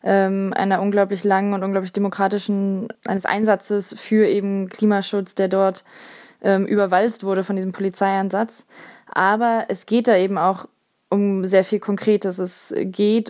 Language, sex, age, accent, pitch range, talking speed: German, female, 20-39, German, 195-220 Hz, 140 wpm